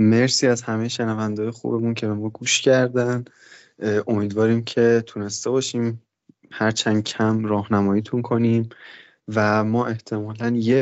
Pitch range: 105-120 Hz